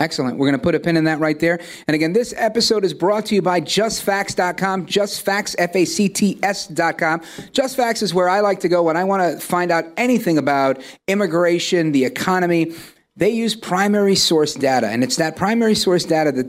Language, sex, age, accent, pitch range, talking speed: English, male, 40-59, American, 140-190 Hz, 195 wpm